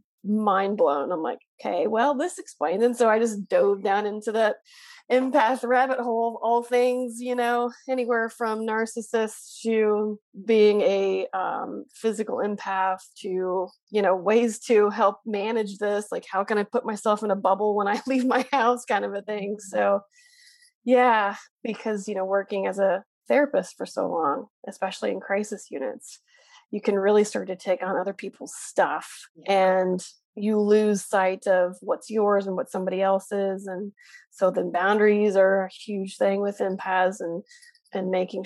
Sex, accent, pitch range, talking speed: female, American, 195-235 Hz, 170 wpm